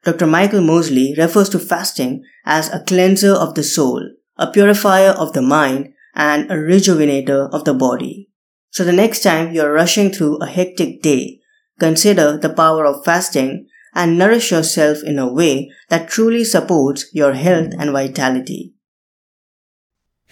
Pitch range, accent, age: 160-205 Hz, Indian, 20-39